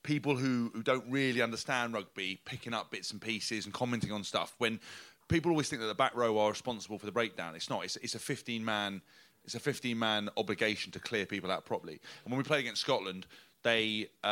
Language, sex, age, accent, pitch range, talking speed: English, male, 30-49, British, 110-130 Hz, 220 wpm